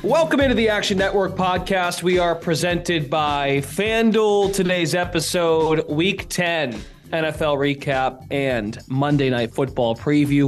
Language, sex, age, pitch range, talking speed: English, male, 20-39, 145-190 Hz, 125 wpm